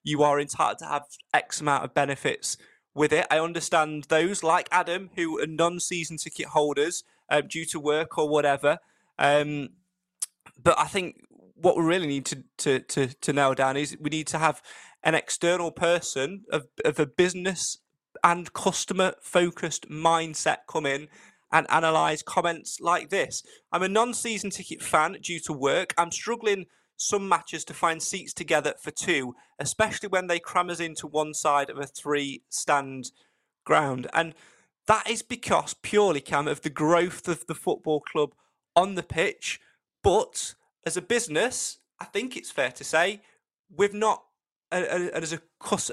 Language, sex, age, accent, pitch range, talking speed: English, male, 20-39, British, 150-180 Hz, 165 wpm